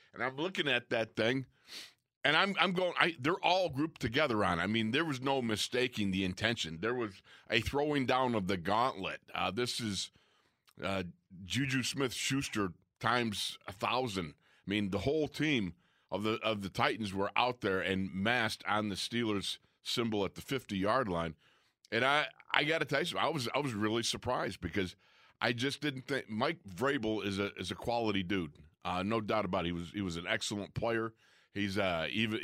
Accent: American